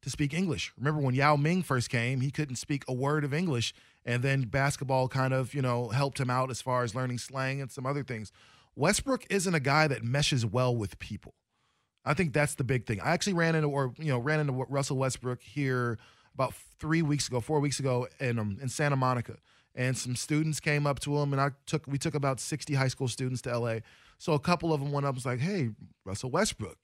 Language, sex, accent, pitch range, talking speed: English, male, American, 120-145 Hz, 235 wpm